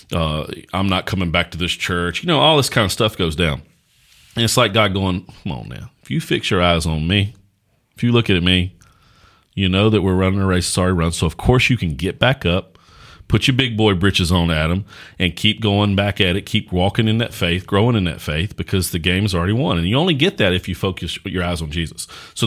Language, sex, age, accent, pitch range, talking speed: English, male, 40-59, American, 90-110 Hz, 250 wpm